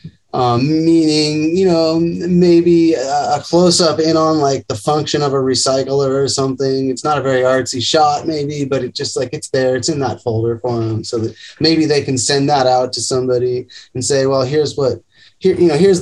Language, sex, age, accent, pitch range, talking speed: English, male, 20-39, American, 115-150 Hz, 215 wpm